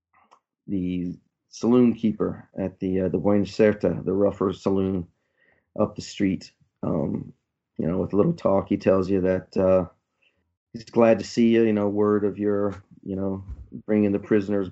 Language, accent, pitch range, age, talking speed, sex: English, American, 95-105 Hz, 40-59, 170 wpm, male